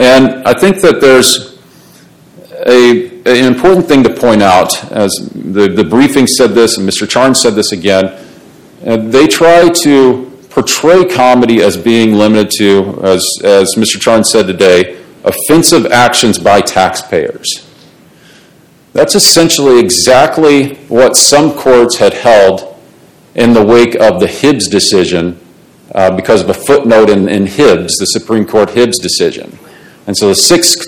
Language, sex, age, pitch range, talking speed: English, male, 40-59, 105-135 Hz, 145 wpm